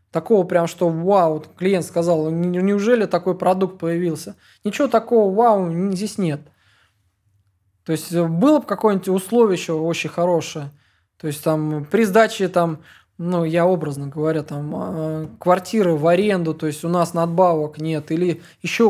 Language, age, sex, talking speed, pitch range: English, 20-39, male, 150 wpm, 155-185 Hz